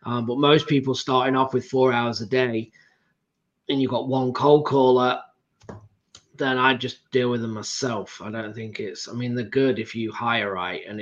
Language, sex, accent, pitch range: English, male, British, 125-145 Hz